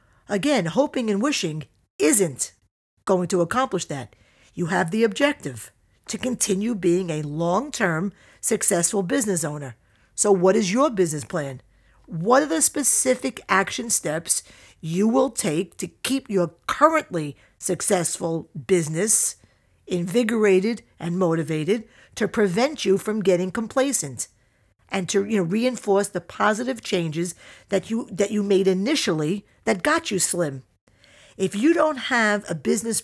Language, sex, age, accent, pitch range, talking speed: English, female, 50-69, American, 165-220 Hz, 135 wpm